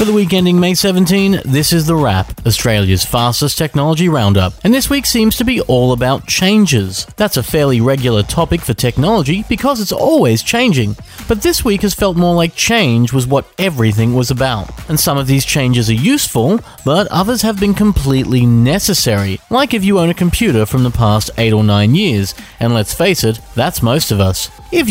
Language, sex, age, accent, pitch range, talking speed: English, male, 30-49, Australian, 115-180 Hz, 200 wpm